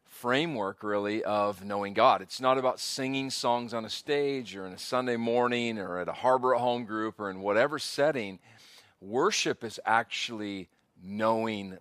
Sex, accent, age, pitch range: male, American, 40-59, 105-125 Hz